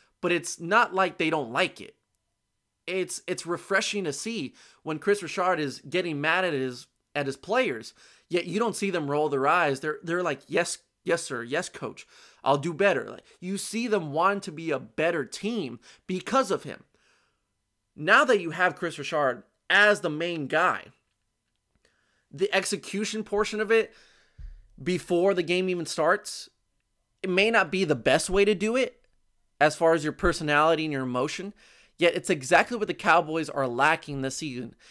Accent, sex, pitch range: American, male, 145-195 Hz